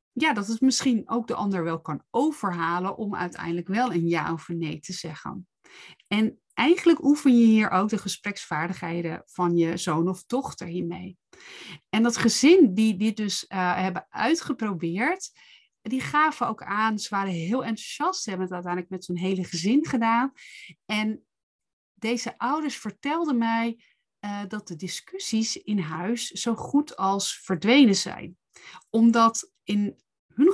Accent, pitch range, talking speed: Dutch, 180-235 Hz, 155 wpm